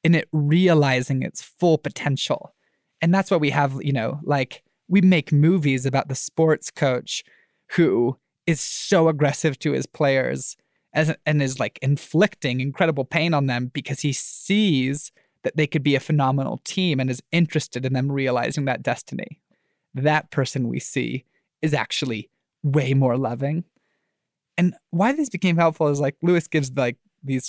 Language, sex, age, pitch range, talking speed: English, male, 20-39, 135-165 Hz, 160 wpm